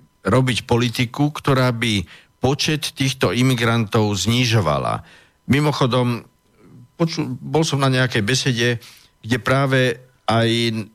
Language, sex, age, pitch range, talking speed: Slovak, male, 50-69, 100-130 Hz, 95 wpm